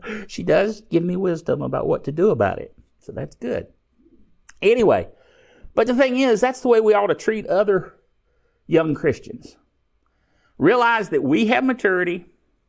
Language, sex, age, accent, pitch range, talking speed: English, male, 50-69, American, 160-240 Hz, 160 wpm